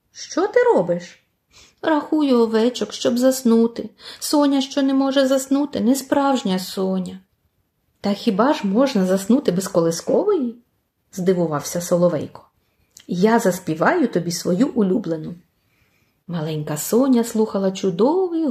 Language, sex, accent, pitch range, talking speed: Ukrainian, female, native, 185-270 Hz, 125 wpm